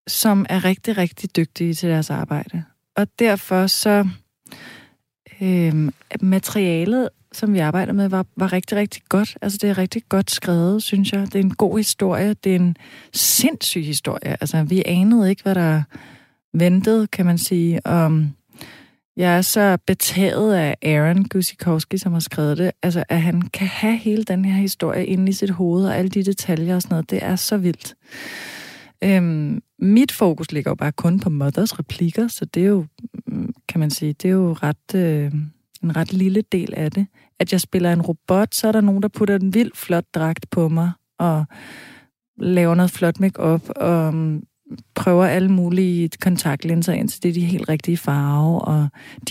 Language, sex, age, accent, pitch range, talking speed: Danish, female, 30-49, native, 165-200 Hz, 185 wpm